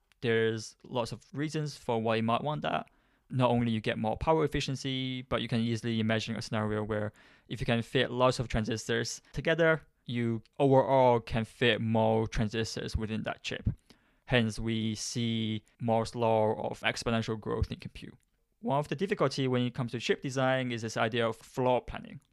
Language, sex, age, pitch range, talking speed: English, male, 20-39, 115-130 Hz, 185 wpm